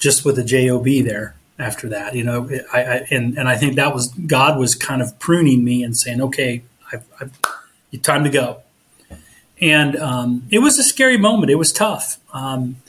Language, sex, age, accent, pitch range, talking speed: English, male, 30-49, American, 125-145 Hz, 195 wpm